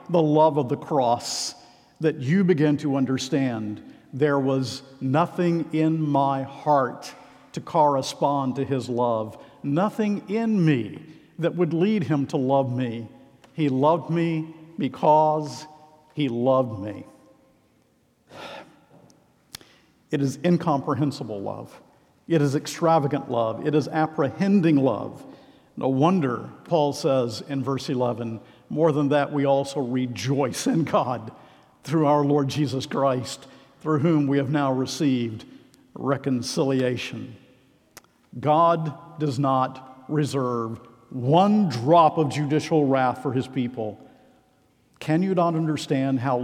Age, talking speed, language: 50-69, 120 wpm, English